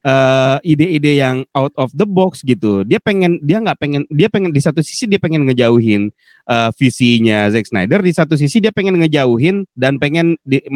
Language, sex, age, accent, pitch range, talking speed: Indonesian, male, 30-49, native, 140-180 Hz, 190 wpm